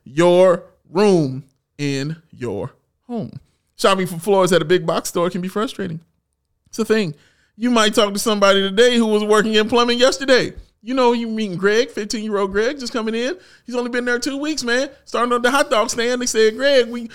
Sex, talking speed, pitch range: male, 210 wpm, 170-245 Hz